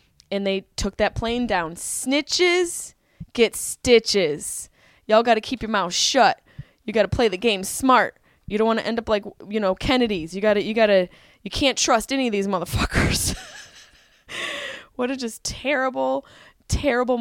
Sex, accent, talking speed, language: female, American, 180 wpm, English